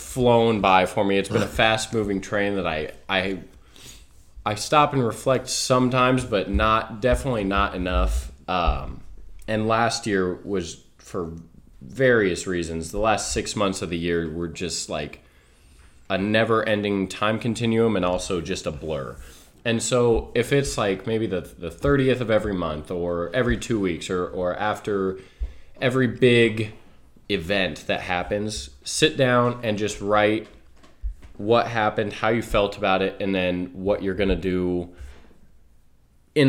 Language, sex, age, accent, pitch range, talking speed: English, male, 20-39, American, 85-110 Hz, 155 wpm